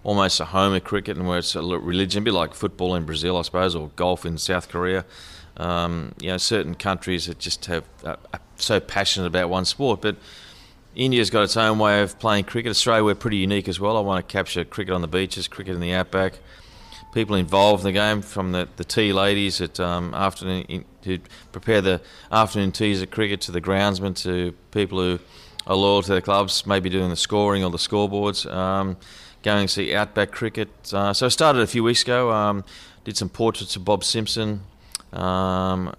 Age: 30-49